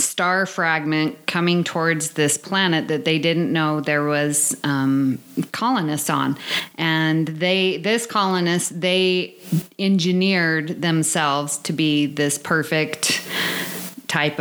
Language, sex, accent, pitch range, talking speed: English, female, American, 160-190 Hz, 110 wpm